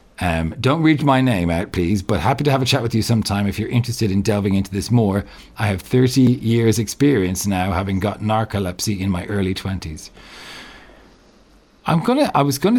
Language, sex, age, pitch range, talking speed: English, male, 40-59, 95-130 Hz, 200 wpm